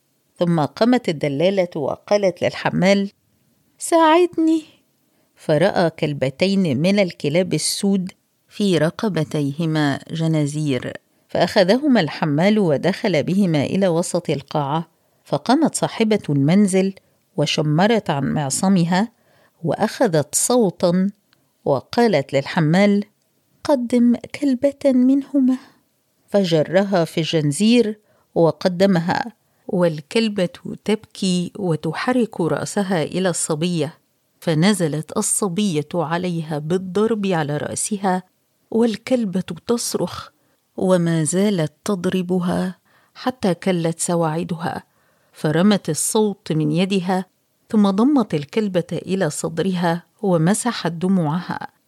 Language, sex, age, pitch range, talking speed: Arabic, female, 50-69, 165-215 Hz, 80 wpm